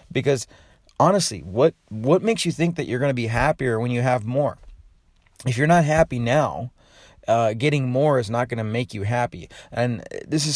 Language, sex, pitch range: English, male, 110-140 Hz